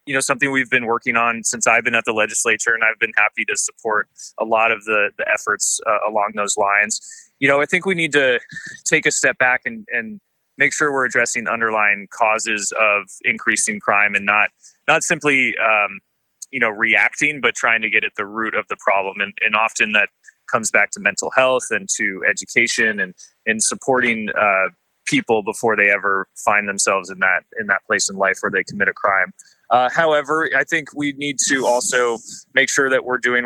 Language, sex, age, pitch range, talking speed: English, male, 20-39, 115-160 Hz, 210 wpm